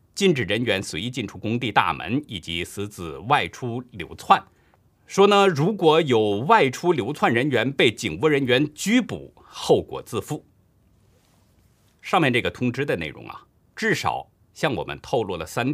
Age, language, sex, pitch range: 50-69, Chinese, male, 100-155 Hz